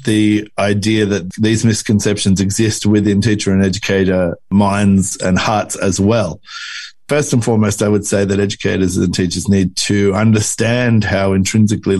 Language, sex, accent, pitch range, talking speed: English, male, Australian, 100-115 Hz, 150 wpm